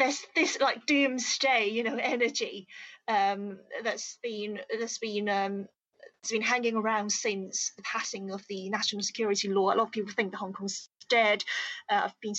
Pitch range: 200-250 Hz